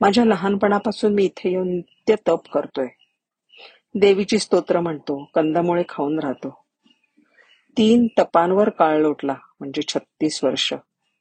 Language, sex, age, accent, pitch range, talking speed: Marathi, female, 40-59, native, 150-210 Hz, 80 wpm